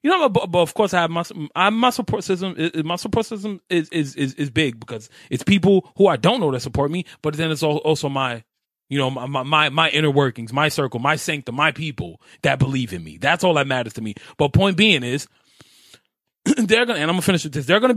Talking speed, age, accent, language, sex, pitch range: 240 wpm, 30-49, American, English, male, 135-195 Hz